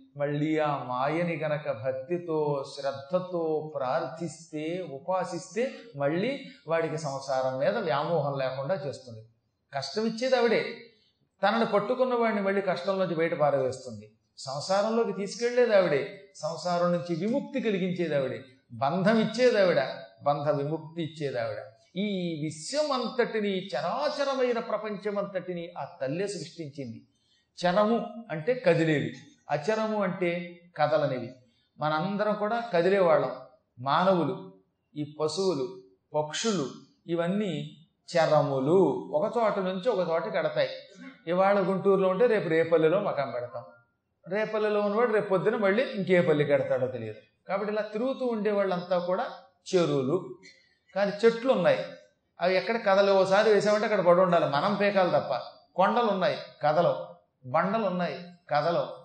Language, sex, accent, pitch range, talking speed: Telugu, male, native, 150-205 Hz, 110 wpm